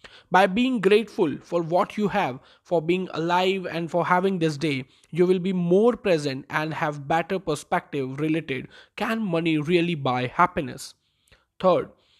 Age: 20-39